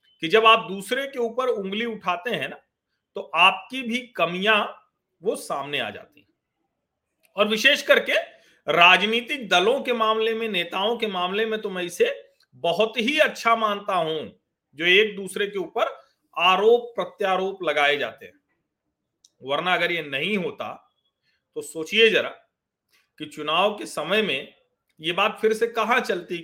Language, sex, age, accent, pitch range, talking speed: Hindi, male, 40-59, native, 170-230 Hz, 155 wpm